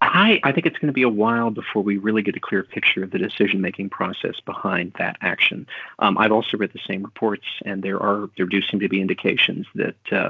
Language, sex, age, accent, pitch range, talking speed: English, male, 40-59, American, 100-110 Hz, 240 wpm